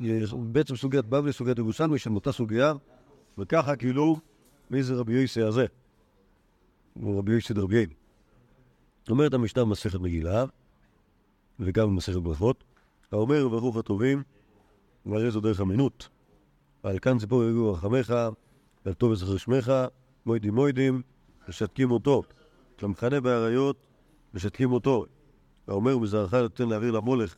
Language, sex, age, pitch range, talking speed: Hebrew, male, 50-69, 110-145 Hz, 125 wpm